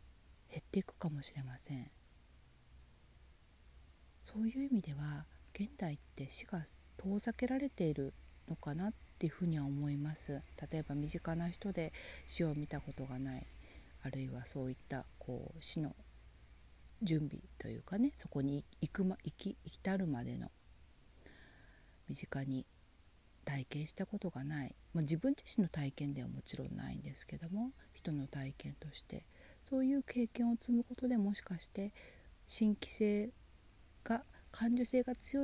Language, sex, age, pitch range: Japanese, female, 40-59, 125-200 Hz